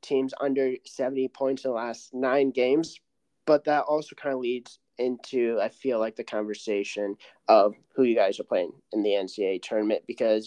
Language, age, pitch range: English, 20-39, 125-145 Hz